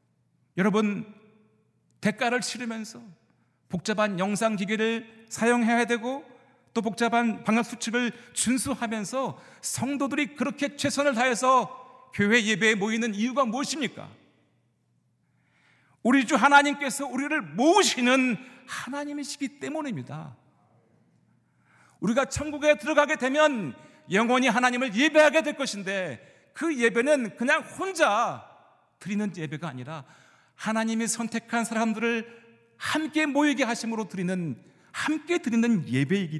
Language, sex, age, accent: Korean, male, 40-59, native